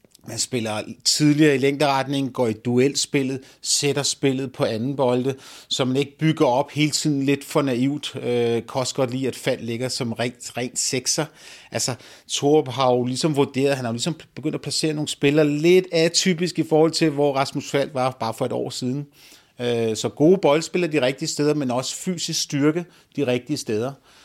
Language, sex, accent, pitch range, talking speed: Danish, male, native, 120-150 Hz, 190 wpm